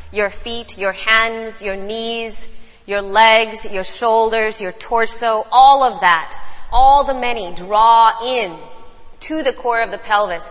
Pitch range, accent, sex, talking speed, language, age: 210-275 Hz, American, female, 150 wpm, English, 30-49